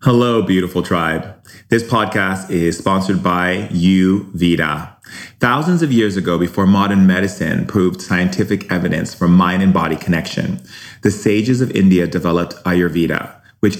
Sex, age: male, 30-49